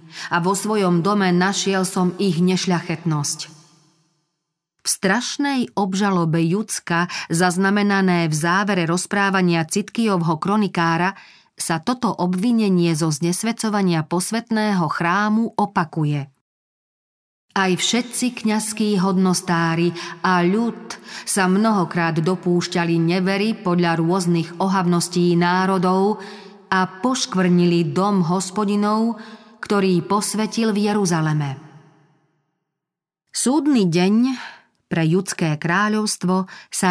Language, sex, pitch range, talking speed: Slovak, female, 170-205 Hz, 90 wpm